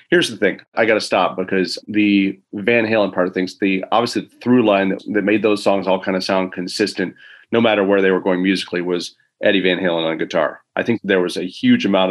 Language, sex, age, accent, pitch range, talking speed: English, male, 30-49, American, 95-110 Hz, 235 wpm